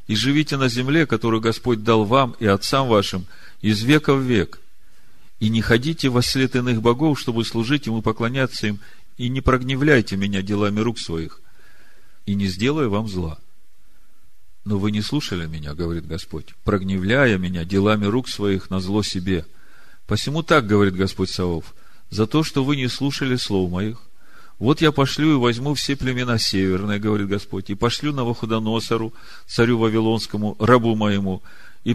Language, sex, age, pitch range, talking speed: Russian, male, 40-59, 100-130 Hz, 165 wpm